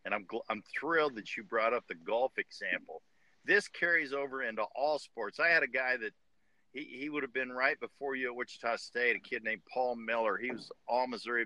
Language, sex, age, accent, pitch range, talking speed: English, male, 50-69, American, 125-160 Hz, 220 wpm